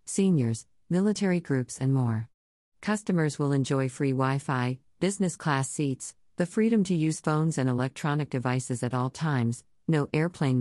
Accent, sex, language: American, female, English